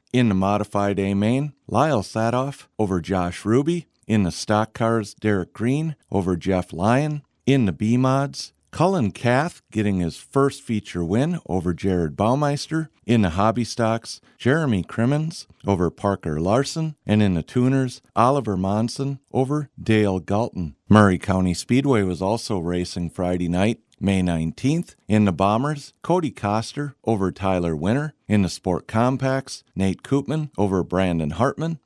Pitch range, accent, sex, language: 95-130 Hz, American, male, English